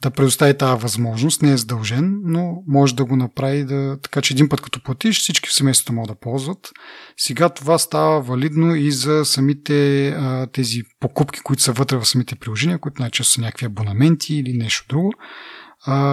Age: 30-49